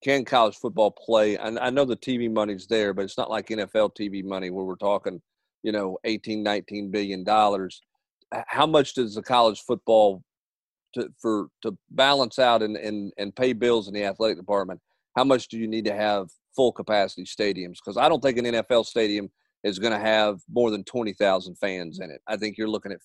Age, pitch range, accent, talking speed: 40-59, 105-125 Hz, American, 200 wpm